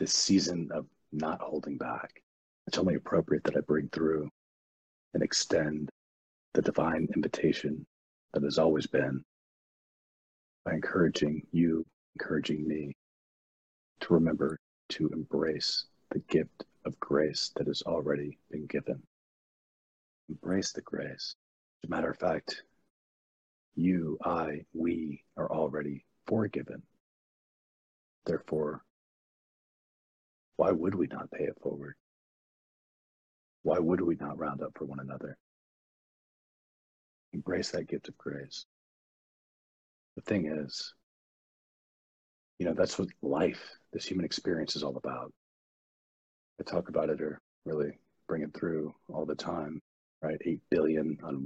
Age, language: 40-59, English